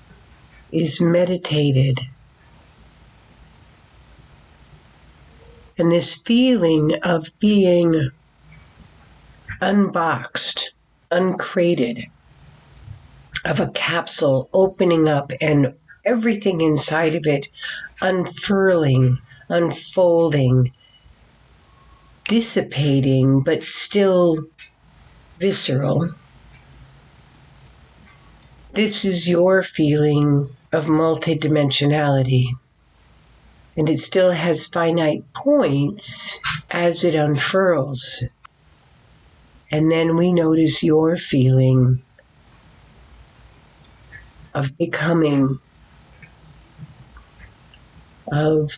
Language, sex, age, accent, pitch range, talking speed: English, female, 60-79, American, 135-170 Hz, 60 wpm